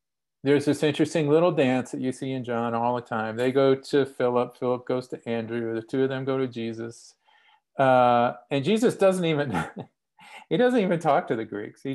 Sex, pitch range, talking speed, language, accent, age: male, 120-145 Hz, 205 wpm, English, American, 40-59